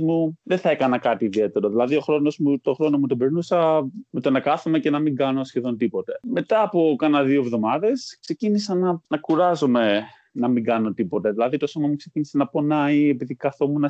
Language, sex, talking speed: Greek, male, 195 wpm